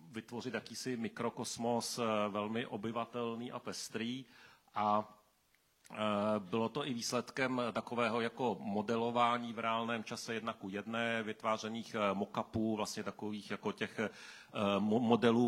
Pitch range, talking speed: 105-115 Hz, 105 wpm